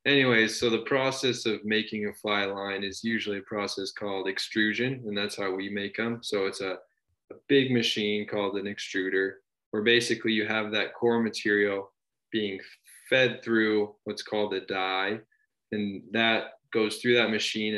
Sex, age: male, 20-39